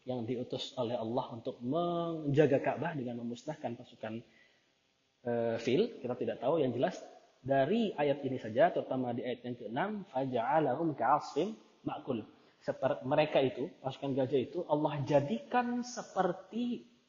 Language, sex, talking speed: Indonesian, male, 135 wpm